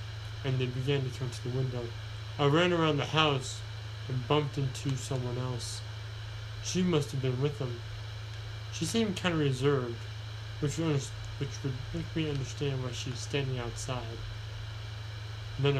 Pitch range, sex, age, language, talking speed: 110-145 Hz, male, 20-39, English, 155 wpm